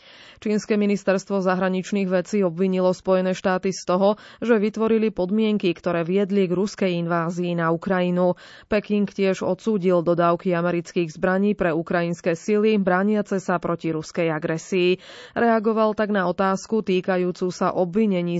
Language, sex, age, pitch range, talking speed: Slovak, female, 20-39, 175-205 Hz, 130 wpm